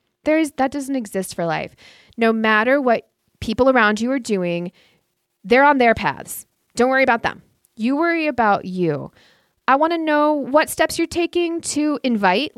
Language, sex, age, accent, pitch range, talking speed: English, female, 20-39, American, 170-220 Hz, 175 wpm